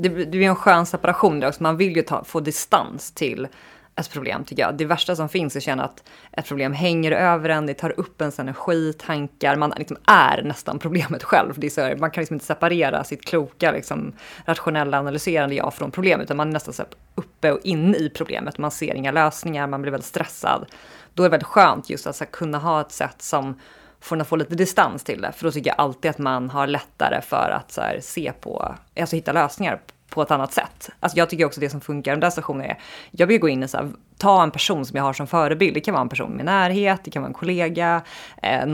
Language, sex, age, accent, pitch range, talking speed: Swedish, female, 30-49, native, 145-175 Hz, 250 wpm